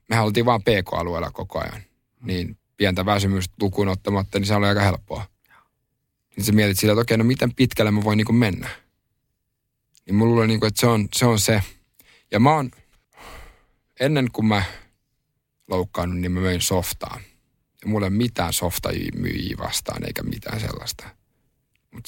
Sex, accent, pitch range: male, native, 95-120 Hz